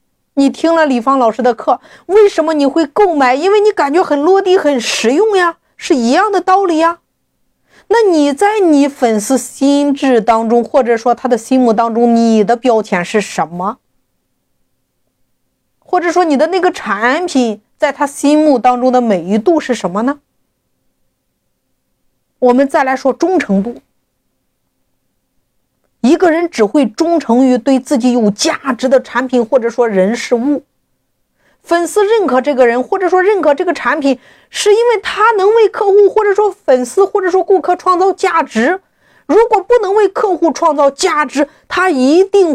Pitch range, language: 245-360 Hz, Chinese